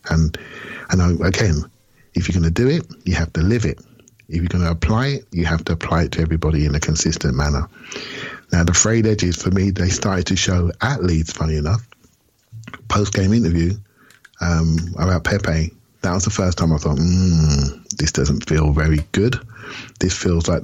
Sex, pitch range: male, 80-95 Hz